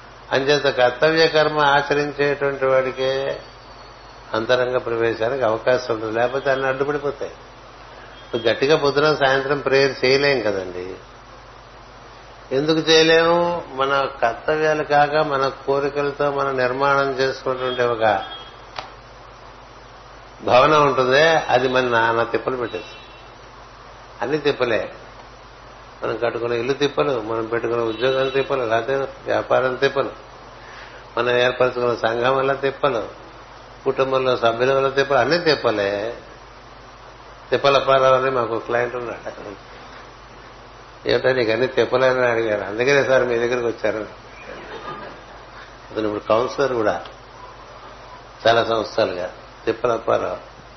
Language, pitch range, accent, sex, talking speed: Telugu, 120-140 Hz, native, male, 95 wpm